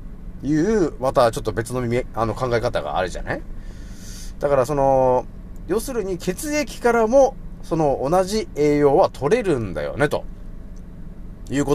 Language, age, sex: Japanese, 40-59, male